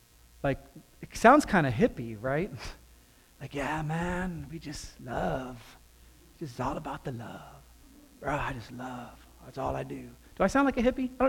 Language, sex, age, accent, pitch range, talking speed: English, male, 40-59, American, 150-245 Hz, 170 wpm